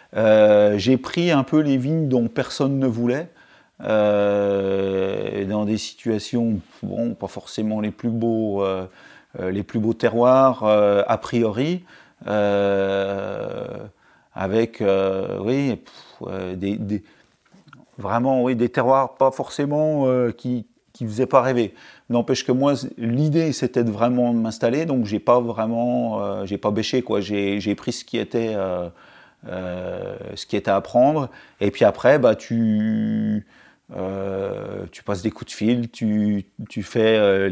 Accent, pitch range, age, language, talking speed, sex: French, 100-125 Hz, 40-59, French, 150 wpm, male